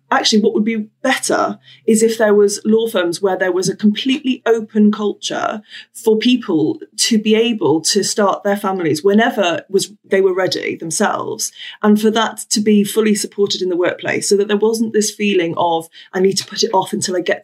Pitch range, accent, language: 185-225 Hz, British, English